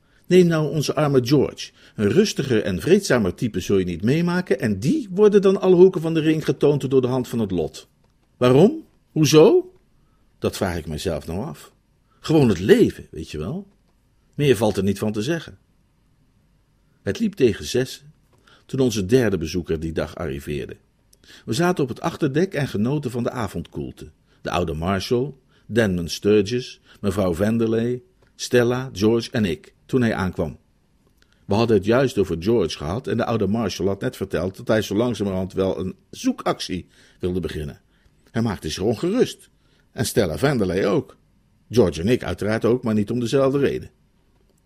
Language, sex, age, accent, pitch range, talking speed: Dutch, male, 50-69, Dutch, 95-140 Hz, 170 wpm